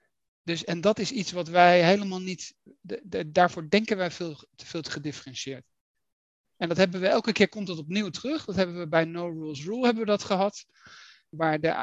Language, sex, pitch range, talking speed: Dutch, male, 155-195 Hz, 210 wpm